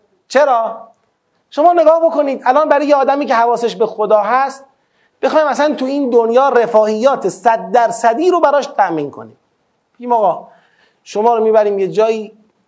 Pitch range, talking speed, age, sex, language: 190-265 Hz, 145 wpm, 30-49, male, Persian